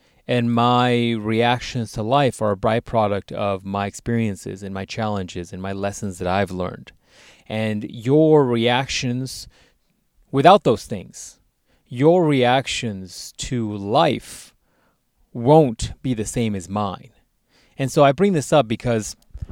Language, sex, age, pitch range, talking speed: English, male, 30-49, 110-145 Hz, 130 wpm